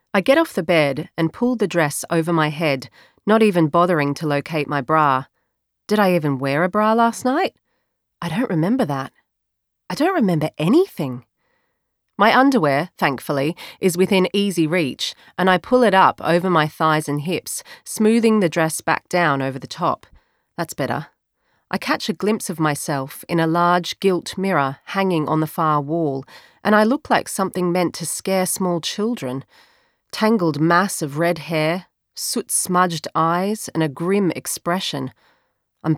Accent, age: Australian, 30-49